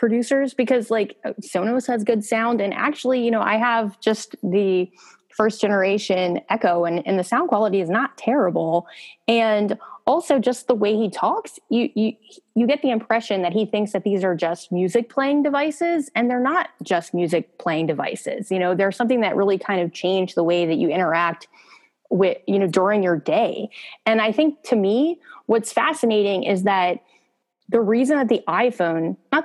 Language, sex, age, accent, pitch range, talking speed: English, female, 20-39, American, 190-245 Hz, 185 wpm